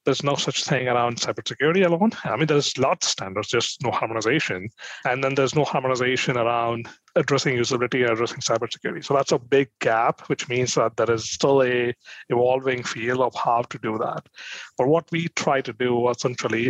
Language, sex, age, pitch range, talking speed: English, male, 30-49, 120-140 Hz, 190 wpm